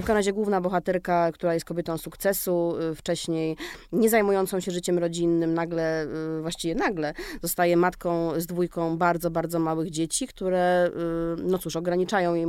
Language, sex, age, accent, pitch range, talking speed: Polish, female, 20-39, native, 170-185 Hz, 145 wpm